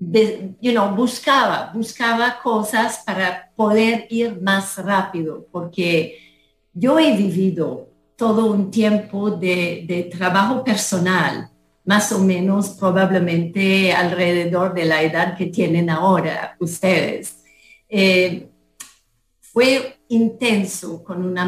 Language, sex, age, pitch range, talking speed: English, female, 40-59, 175-215 Hz, 105 wpm